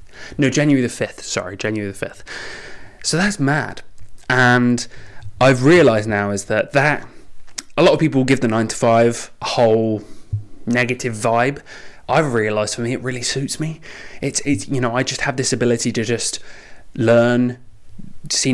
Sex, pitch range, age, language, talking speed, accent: male, 115-135 Hz, 20-39, English, 170 wpm, British